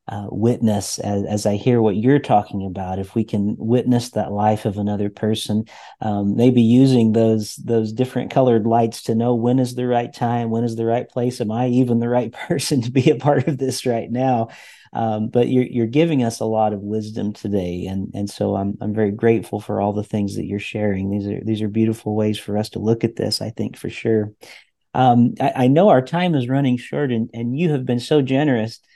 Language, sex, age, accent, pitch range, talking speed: English, male, 40-59, American, 105-125 Hz, 230 wpm